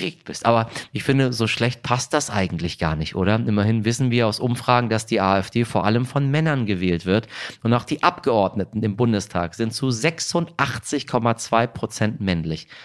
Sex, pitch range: male, 95-125 Hz